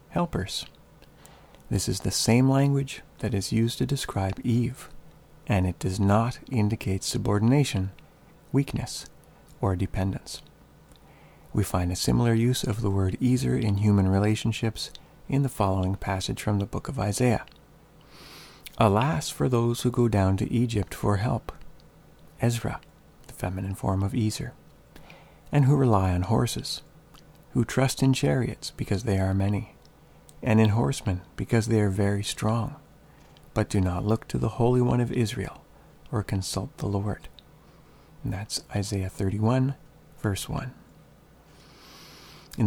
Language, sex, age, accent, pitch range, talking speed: English, male, 40-59, American, 100-130 Hz, 140 wpm